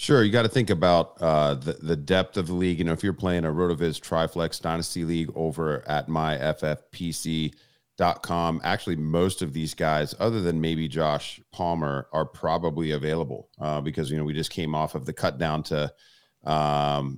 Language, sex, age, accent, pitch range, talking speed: English, male, 40-59, American, 75-90 Hz, 185 wpm